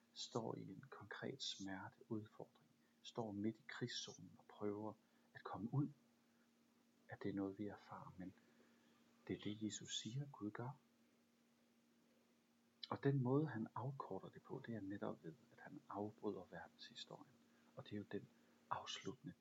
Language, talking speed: Danish, 150 wpm